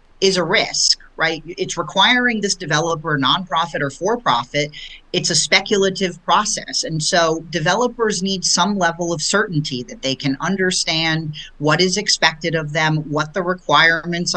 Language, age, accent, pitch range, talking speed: English, 40-59, American, 150-195 Hz, 150 wpm